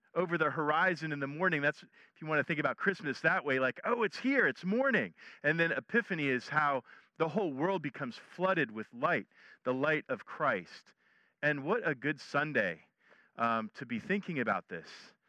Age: 40-59